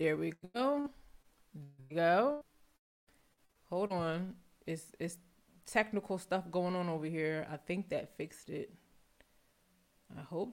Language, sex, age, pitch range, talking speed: English, female, 20-39, 165-210 Hz, 130 wpm